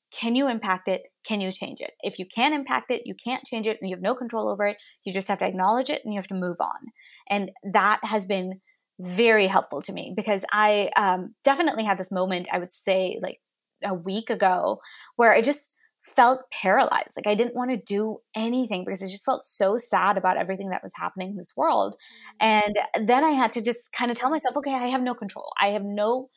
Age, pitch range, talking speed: 20-39, 190-230 Hz, 235 wpm